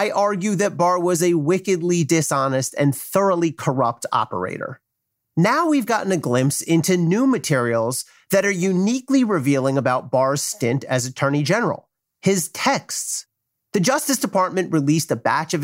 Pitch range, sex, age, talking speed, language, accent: 140-195 Hz, male, 30-49, 150 wpm, English, American